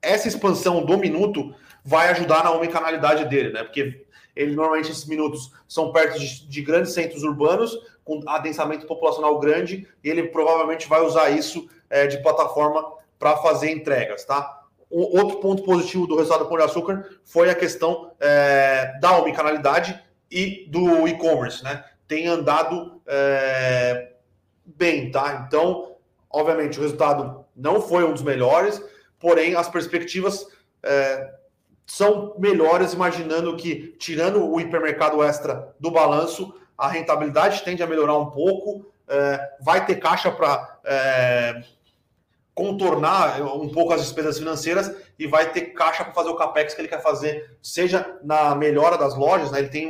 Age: 30-49